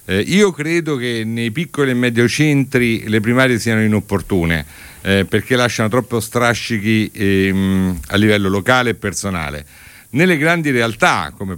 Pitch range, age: 100-140 Hz, 50-69